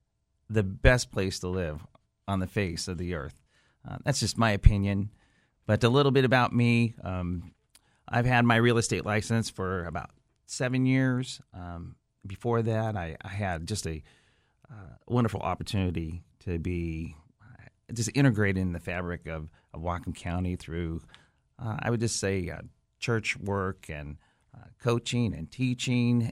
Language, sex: English, male